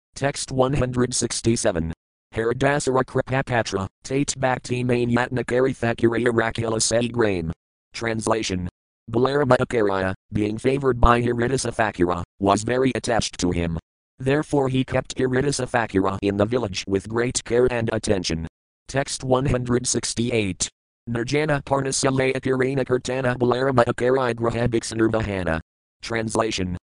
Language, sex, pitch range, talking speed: English, male, 105-125 Hz, 105 wpm